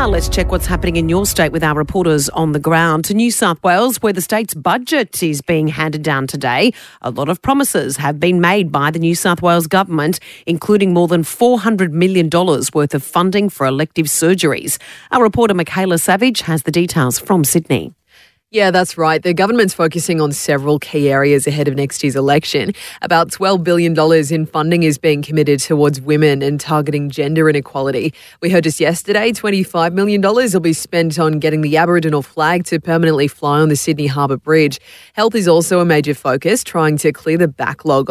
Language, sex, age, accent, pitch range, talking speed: English, female, 30-49, Australian, 150-180 Hz, 190 wpm